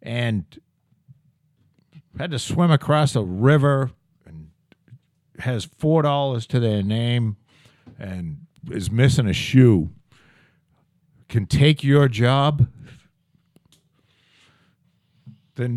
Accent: American